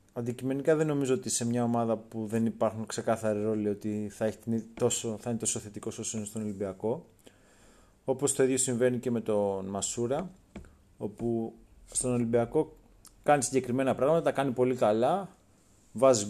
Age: 30-49